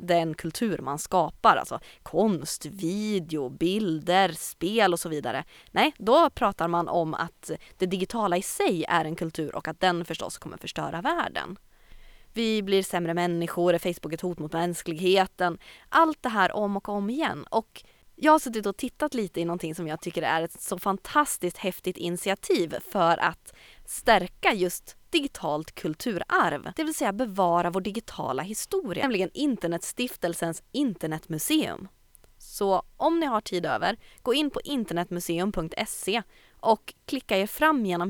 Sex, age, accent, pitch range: female, 20-39, native, 170-225 Hz